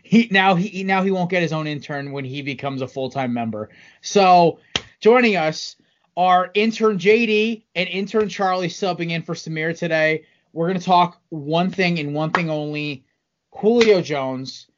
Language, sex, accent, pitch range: English, male, American, 155-200 Hz